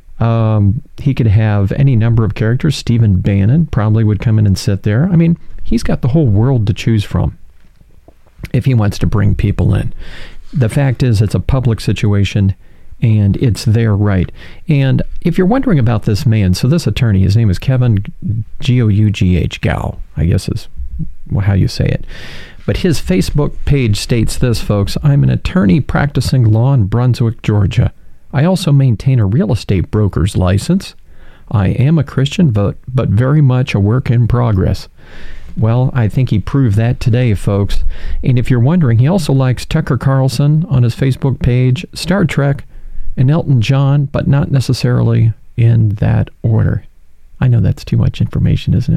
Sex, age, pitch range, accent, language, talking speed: male, 40-59, 100-135 Hz, American, English, 175 wpm